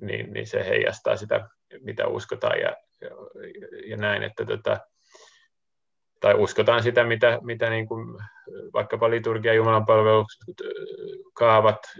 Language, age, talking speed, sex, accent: Finnish, 30-49, 120 wpm, male, native